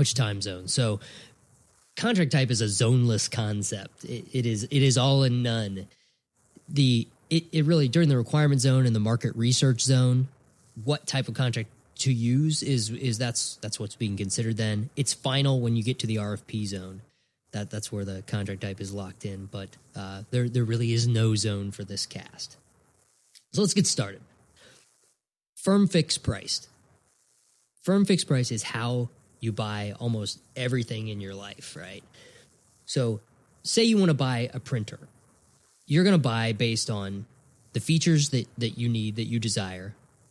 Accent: American